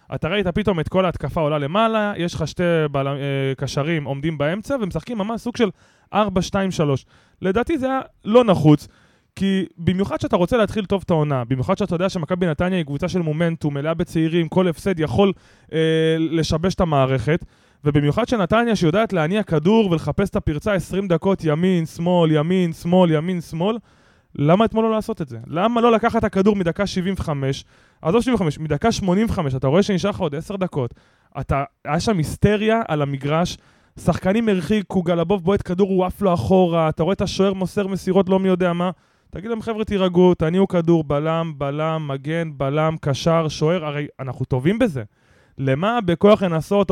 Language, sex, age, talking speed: Hebrew, male, 20-39, 175 wpm